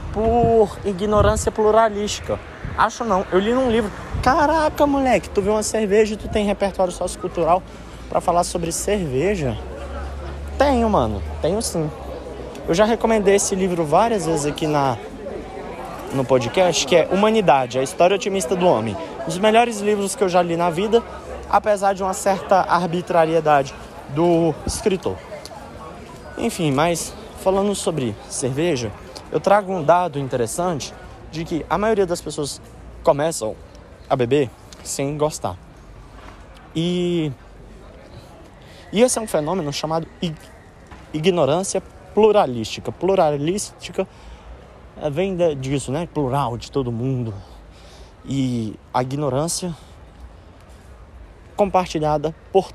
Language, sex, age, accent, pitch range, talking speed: Portuguese, male, 20-39, Brazilian, 120-195 Hz, 120 wpm